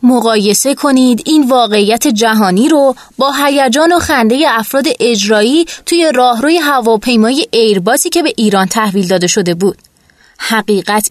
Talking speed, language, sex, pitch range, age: 130 wpm, Persian, female, 215-280 Hz, 20-39